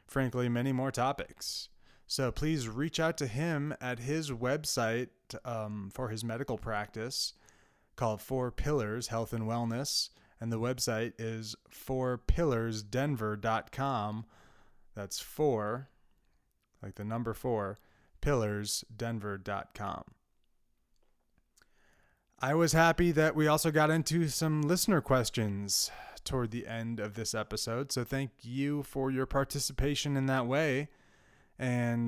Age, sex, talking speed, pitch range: 20-39, male, 120 wpm, 110-140 Hz